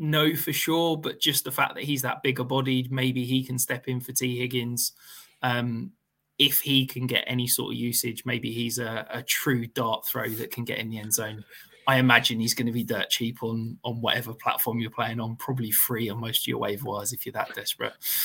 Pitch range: 125-160 Hz